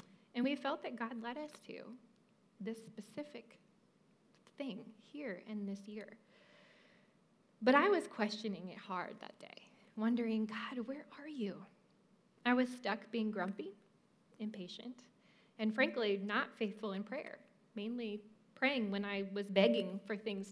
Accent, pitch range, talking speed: American, 205-240 Hz, 140 wpm